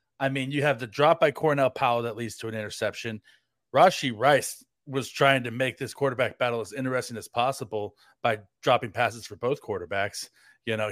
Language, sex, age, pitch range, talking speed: English, male, 30-49, 120-145 Hz, 190 wpm